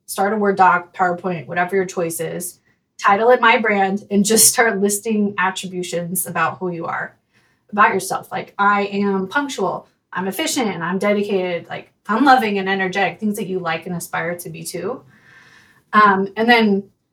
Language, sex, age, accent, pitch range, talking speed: English, female, 20-39, American, 180-210 Hz, 175 wpm